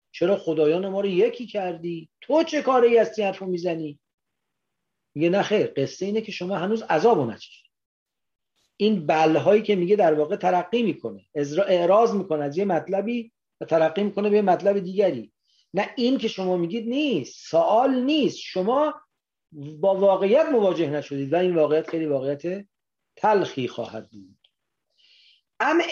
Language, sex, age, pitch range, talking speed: English, male, 40-59, 160-230 Hz, 150 wpm